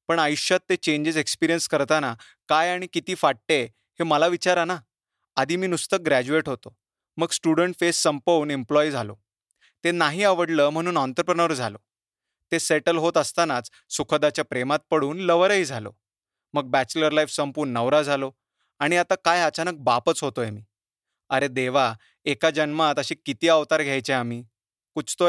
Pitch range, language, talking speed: 130-165 Hz, Marathi, 150 wpm